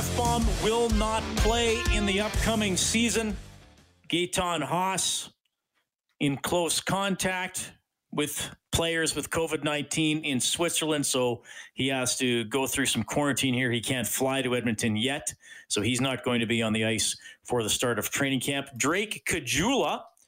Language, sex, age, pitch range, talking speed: English, male, 40-59, 115-165 Hz, 150 wpm